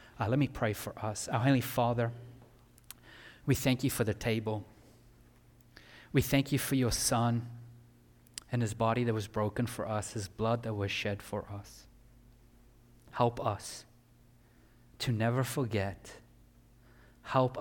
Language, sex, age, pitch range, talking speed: English, male, 30-49, 100-120 Hz, 145 wpm